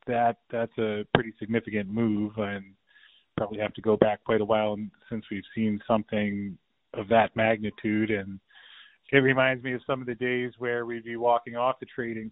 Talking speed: 190 wpm